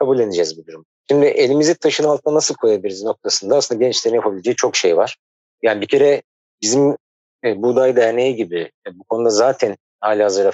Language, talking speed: Turkish, 180 wpm